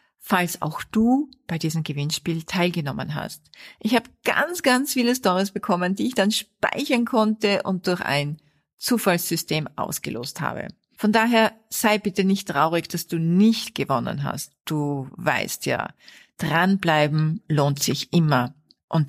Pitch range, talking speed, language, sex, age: 155-210 Hz, 140 wpm, German, female, 50-69